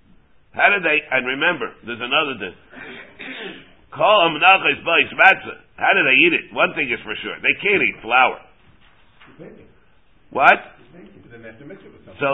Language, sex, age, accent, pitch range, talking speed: English, male, 60-79, American, 145-185 Hz, 135 wpm